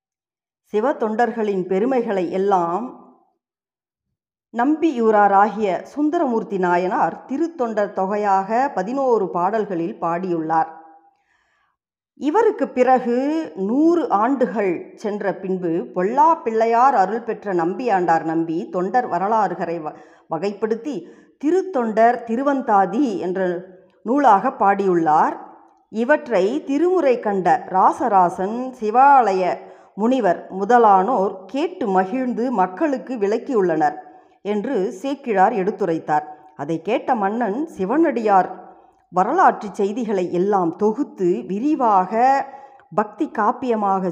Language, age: Tamil, 50-69